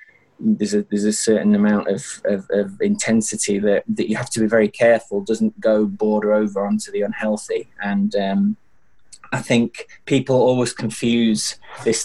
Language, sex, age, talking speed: English, male, 20-39, 165 wpm